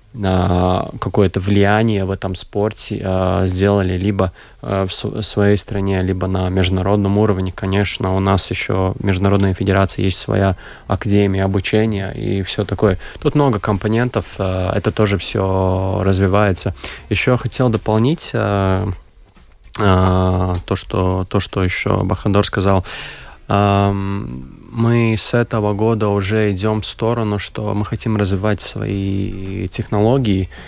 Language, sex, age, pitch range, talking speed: Russian, male, 20-39, 95-110 Hz, 115 wpm